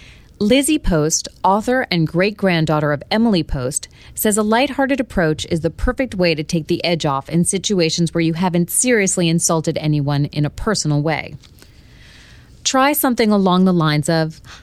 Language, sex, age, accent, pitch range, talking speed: English, female, 30-49, American, 155-230 Hz, 160 wpm